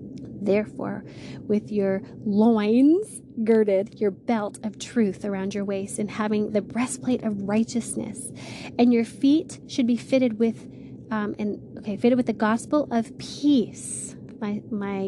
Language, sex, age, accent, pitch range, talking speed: English, female, 20-39, American, 205-235 Hz, 145 wpm